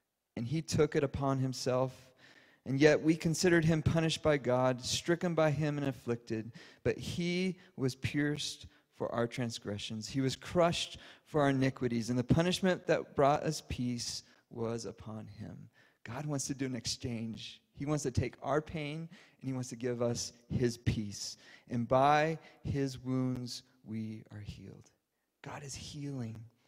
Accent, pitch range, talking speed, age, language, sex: American, 115-135 Hz, 160 wpm, 40-59, English, male